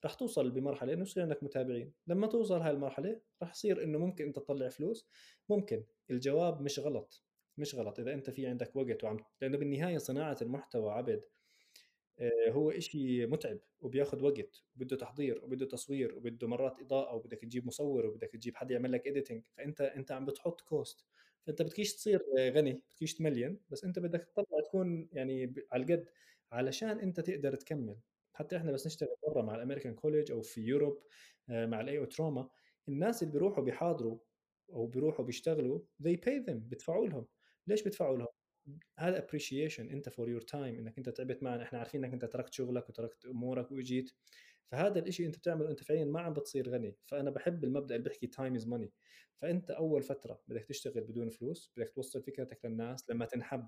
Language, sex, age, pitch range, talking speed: Arabic, male, 20-39, 125-155 Hz, 180 wpm